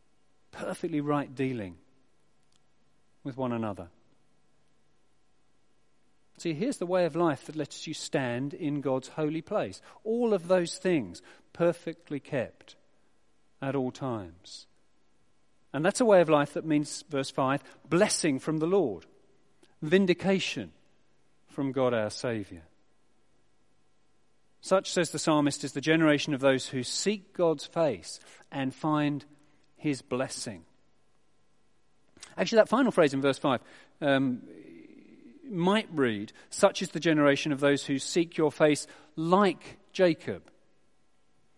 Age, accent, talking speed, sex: 40-59, British, 125 wpm, male